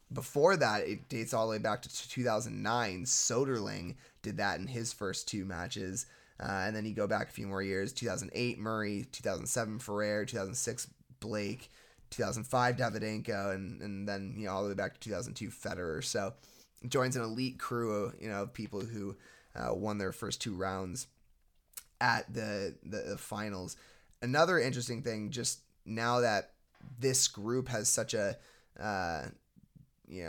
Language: English